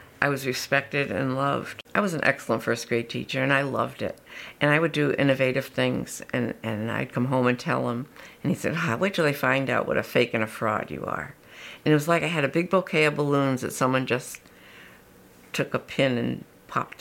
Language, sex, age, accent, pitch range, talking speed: English, female, 60-79, American, 135-155 Hz, 235 wpm